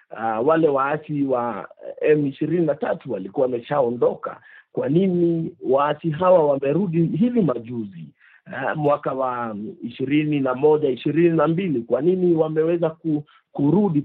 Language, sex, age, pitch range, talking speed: Swahili, male, 50-69, 135-170 Hz, 110 wpm